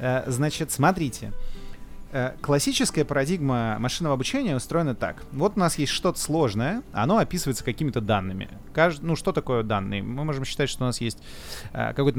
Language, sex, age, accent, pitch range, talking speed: Russian, male, 30-49, native, 110-155 Hz, 150 wpm